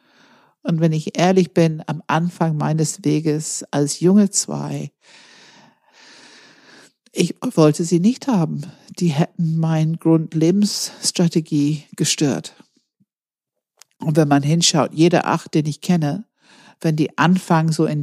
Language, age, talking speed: German, 60-79, 120 wpm